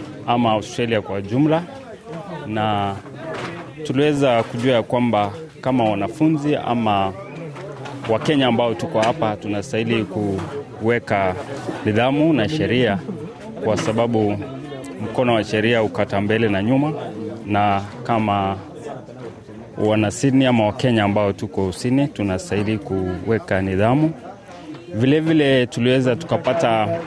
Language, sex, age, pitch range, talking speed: Swahili, male, 30-49, 100-135 Hz, 100 wpm